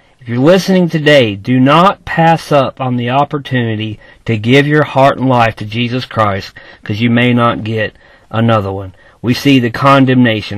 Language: Finnish